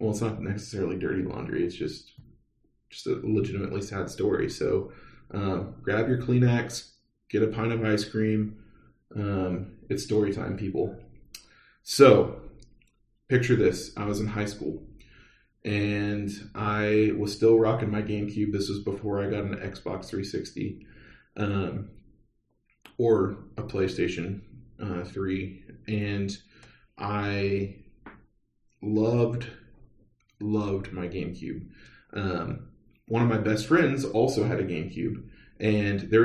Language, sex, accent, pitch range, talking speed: English, male, American, 100-110 Hz, 125 wpm